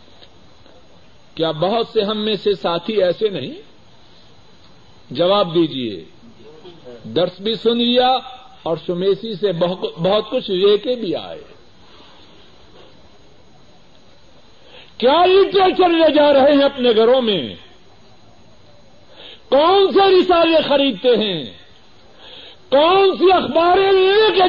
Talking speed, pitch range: 105 wpm, 180-300 Hz